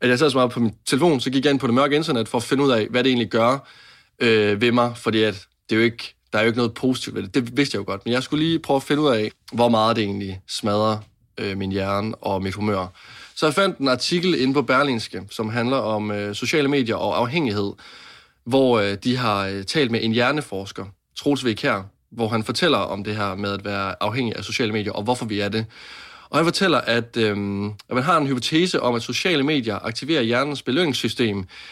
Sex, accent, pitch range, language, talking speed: male, native, 105-135 Hz, Danish, 245 wpm